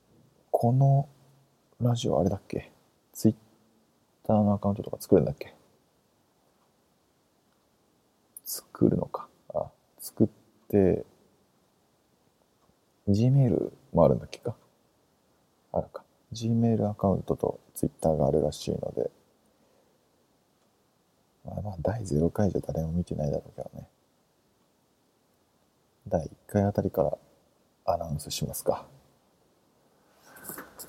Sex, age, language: male, 40-59, English